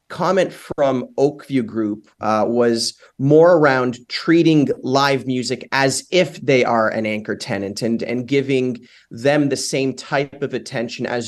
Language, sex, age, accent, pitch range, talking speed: English, male, 30-49, American, 115-140 Hz, 150 wpm